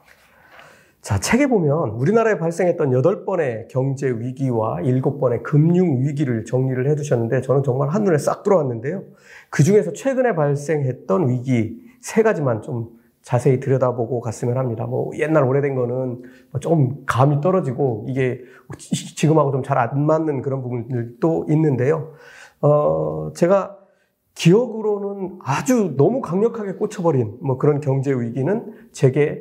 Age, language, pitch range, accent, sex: 40-59, Korean, 125-160 Hz, native, male